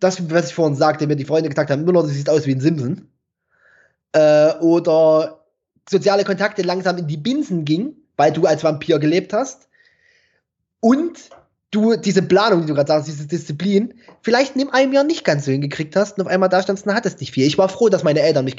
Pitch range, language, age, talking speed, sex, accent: 150-200 Hz, German, 20-39, 225 wpm, male, German